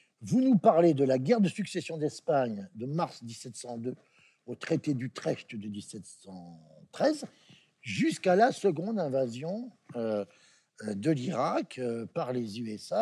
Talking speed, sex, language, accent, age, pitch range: 130 wpm, male, French, French, 50-69, 135-205 Hz